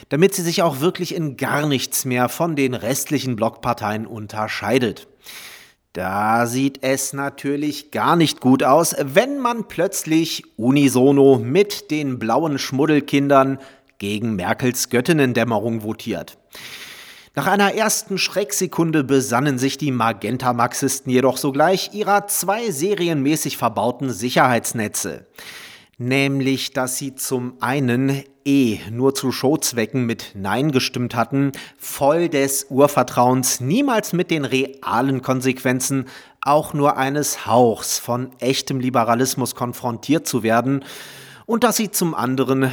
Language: German